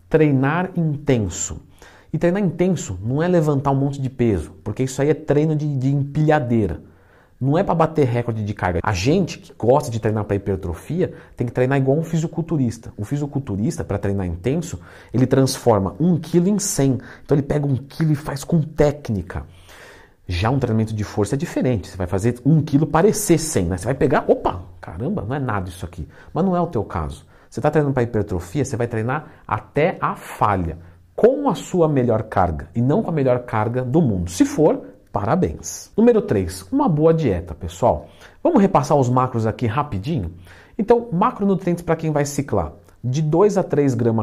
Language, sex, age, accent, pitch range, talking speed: Portuguese, male, 50-69, Brazilian, 105-155 Hz, 195 wpm